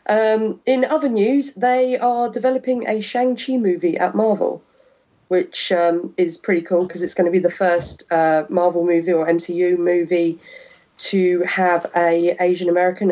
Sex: female